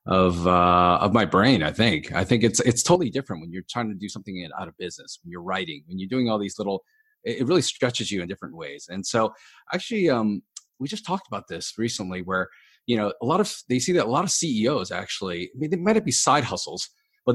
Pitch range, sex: 95-130 Hz, male